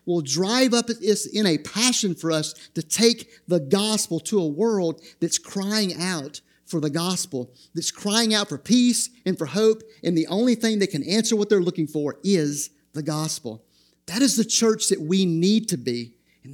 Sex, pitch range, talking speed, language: male, 145-205 Hz, 190 wpm, English